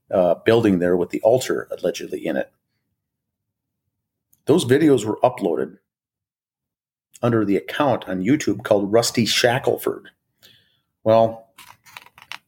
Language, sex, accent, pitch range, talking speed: English, male, American, 100-120 Hz, 105 wpm